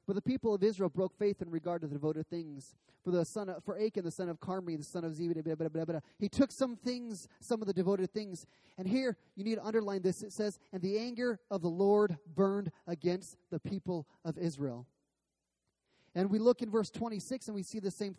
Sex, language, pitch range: male, English, 170-220 Hz